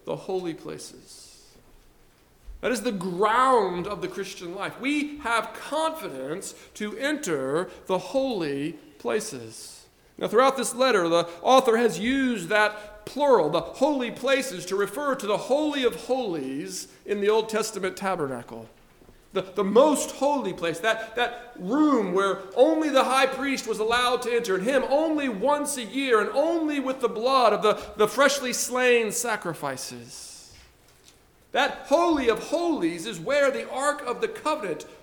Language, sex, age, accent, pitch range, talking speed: English, male, 50-69, American, 205-285 Hz, 150 wpm